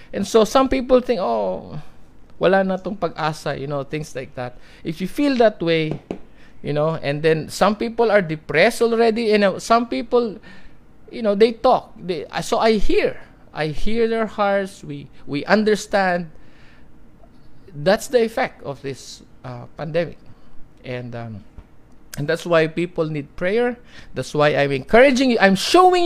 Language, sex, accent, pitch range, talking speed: English, male, Filipino, 155-235 Hz, 165 wpm